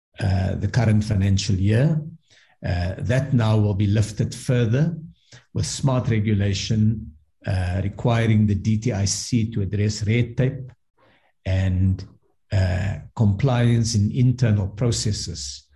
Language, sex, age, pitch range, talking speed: English, male, 50-69, 95-120 Hz, 110 wpm